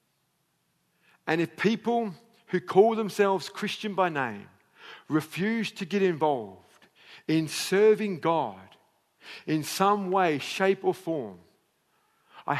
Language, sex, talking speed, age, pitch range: English, male, 110 wpm, 50-69, 125-180 Hz